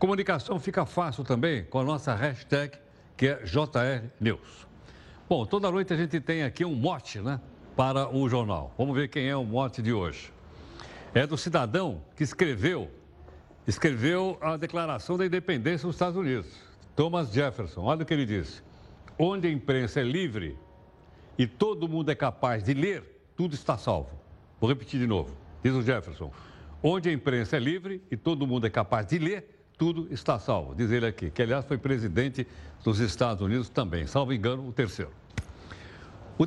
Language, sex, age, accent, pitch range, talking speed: Portuguese, male, 60-79, Brazilian, 110-170 Hz, 175 wpm